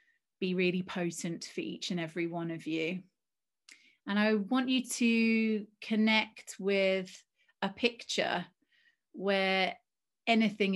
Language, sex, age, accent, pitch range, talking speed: English, female, 30-49, British, 185-220 Hz, 115 wpm